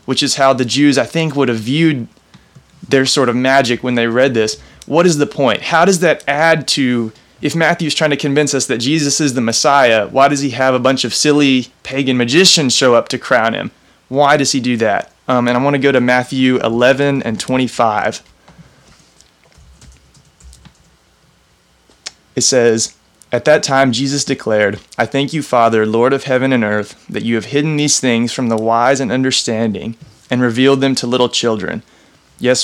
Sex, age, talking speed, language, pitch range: male, 20-39, 190 wpm, English, 115-140 Hz